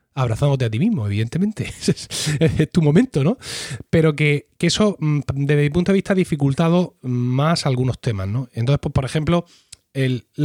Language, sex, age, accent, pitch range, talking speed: Spanish, male, 30-49, Spanish, 135-180 Hz, 165 wpm